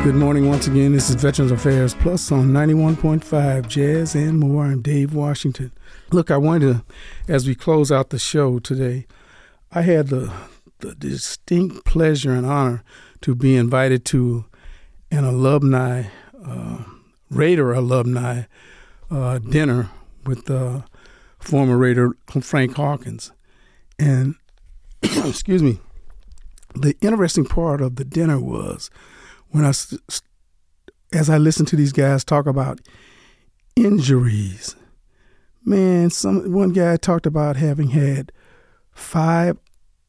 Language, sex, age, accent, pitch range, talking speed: English, male, 50-69, American, 130-160 Hz, 125 wpm